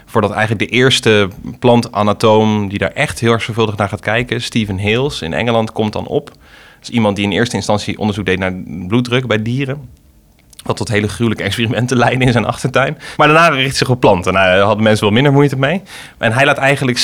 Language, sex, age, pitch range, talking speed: Dutch, male, 30-49, 95-125 Hz, 220 wpm